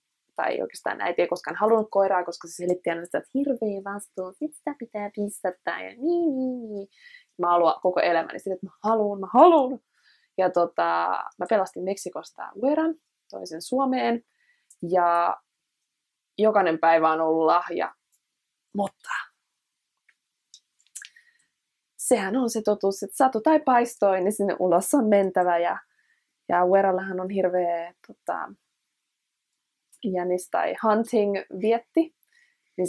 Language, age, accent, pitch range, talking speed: Finnish, 20-39, native, 185-250 Hz, 125 wpm